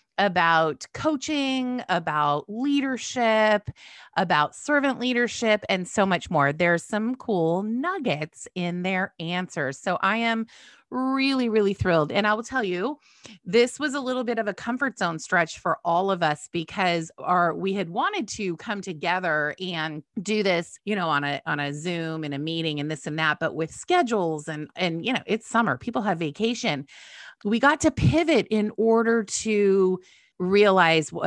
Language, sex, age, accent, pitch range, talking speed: English, female, 30-49, American, 160-230 Hz, 170 wpm